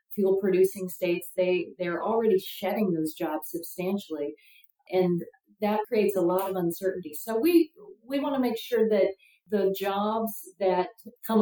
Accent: American